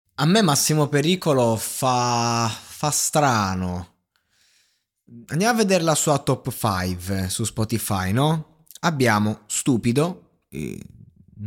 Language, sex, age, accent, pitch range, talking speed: Italian, male, 20-39, native, 110-155 Hz, 105 wpm